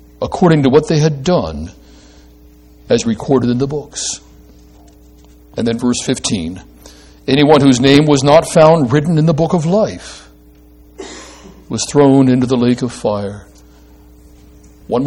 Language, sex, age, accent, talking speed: English, male, 60-79, American, 140 wpm